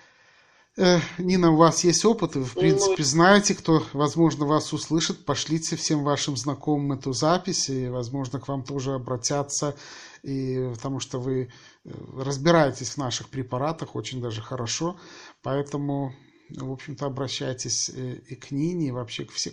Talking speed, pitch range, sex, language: 150 wpm, 140-165 Hz, male, Russian